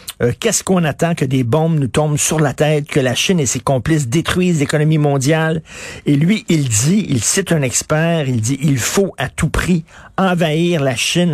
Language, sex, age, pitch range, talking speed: French, male, 50-69, 130-170 Hz, 205 wpm